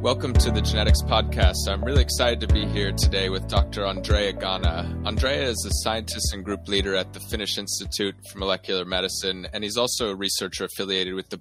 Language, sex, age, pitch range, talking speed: English, male, 20-39, 90-100 Hz, 200 wpm